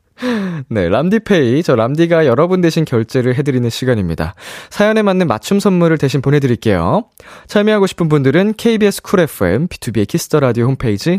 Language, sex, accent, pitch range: Korean, male, native, 105-165 Hz